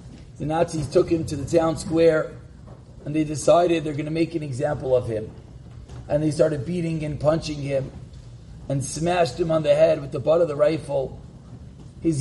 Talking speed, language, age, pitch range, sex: 190 wpm, English, 40-59, 140-170 Hz, male